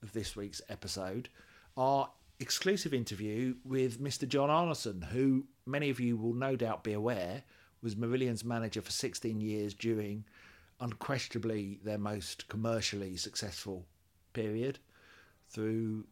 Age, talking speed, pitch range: 50-69, 125 wpm, 100-130 Hz